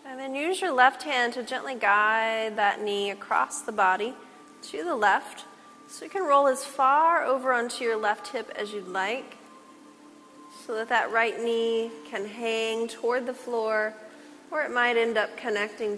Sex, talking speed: female, 175 wpm